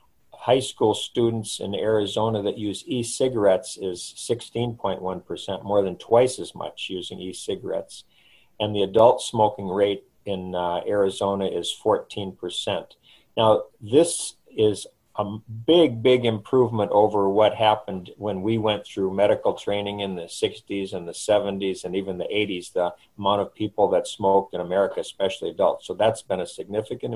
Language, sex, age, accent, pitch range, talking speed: English, male, 50-69, American, 95-115 Hz, 150 wpm